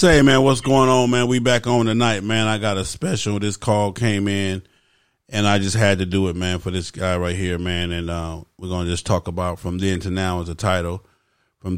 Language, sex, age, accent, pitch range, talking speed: English, male, 30-49, American, 90-105 Hz, 245 wpm